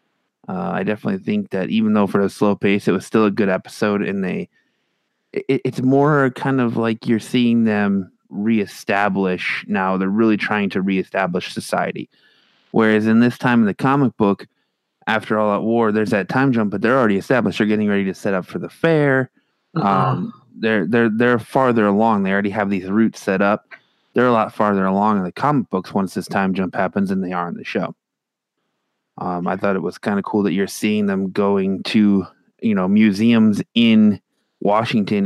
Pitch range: 100-125 Hz